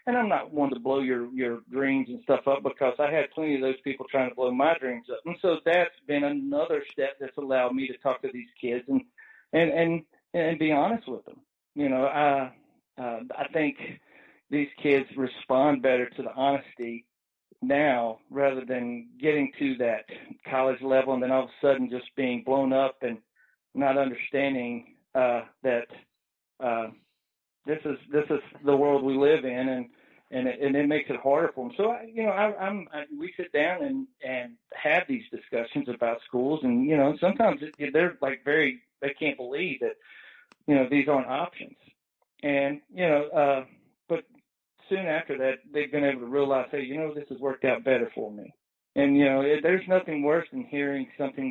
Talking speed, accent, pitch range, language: 190 wpm, American, 130-155 Hz, English